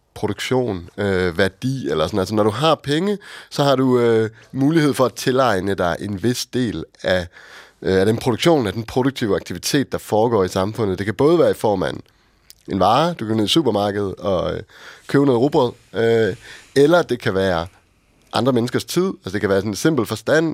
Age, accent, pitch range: 30-49, native, 95-130 Hz